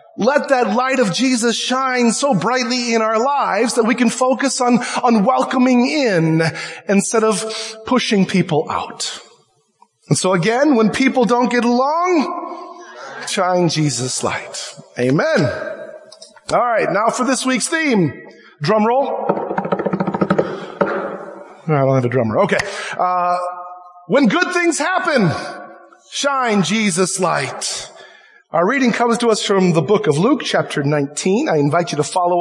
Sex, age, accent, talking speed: male, 30-49, American, 140 wpm